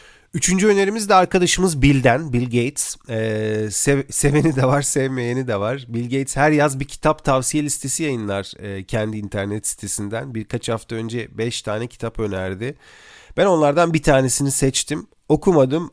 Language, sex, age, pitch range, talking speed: Turkish, male, 40-59, 110-145 Hz, 155 wpm